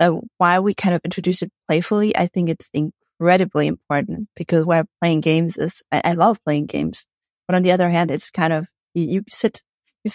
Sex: female